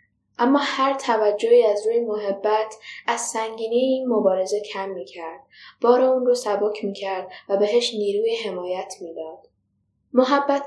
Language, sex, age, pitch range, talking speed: Persian, female, 10-29, 205-255 Hz, 130 wpm